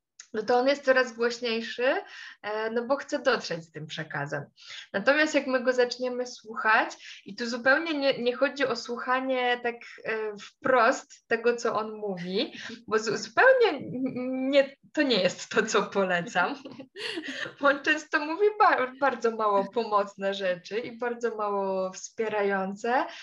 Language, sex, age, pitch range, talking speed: Polish, female, 20-39, 215-275 Hz, 135 wpm